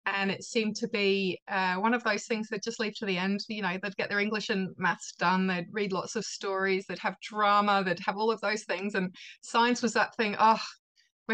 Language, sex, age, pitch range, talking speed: English, female, 20-39, 195-235 Hz, 245 wpm